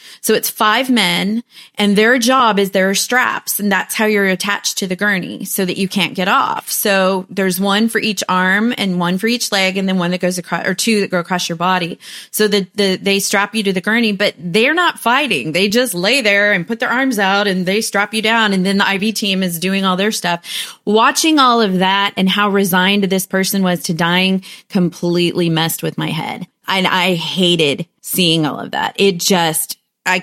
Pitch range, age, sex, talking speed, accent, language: 165-205 Hz, 30-49, female, 220 wpm, American, English